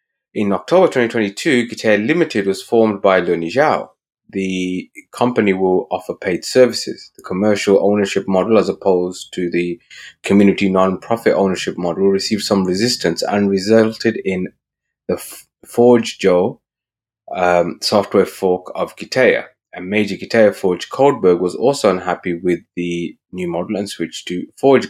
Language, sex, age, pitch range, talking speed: English, male, 30-49, 95-110 Hz, 140 wpm